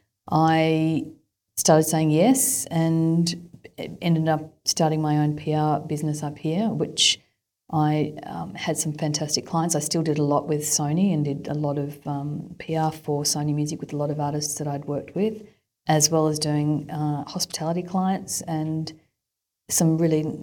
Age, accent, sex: 40-59, Australian, female